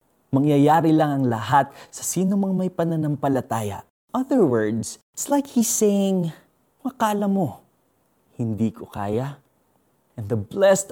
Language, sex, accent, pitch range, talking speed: Filipino, male, native, 115-160 Hz, 125 wpm